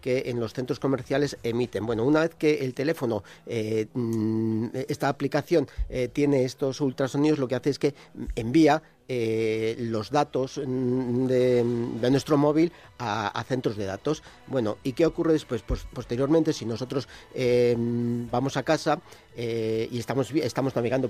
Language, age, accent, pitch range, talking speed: Spanish, 50-69, Spanish, 115-150 Hz, 155 wpm